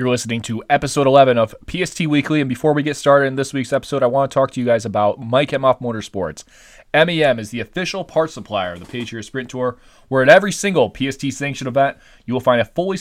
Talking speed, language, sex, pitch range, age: 235 wpm, English, male, 105-155 Hz, 20-39